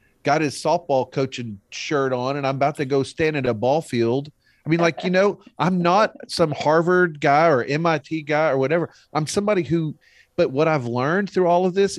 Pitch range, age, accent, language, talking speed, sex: 120-160 Hz, 40-59, American, English, 210 wpm, male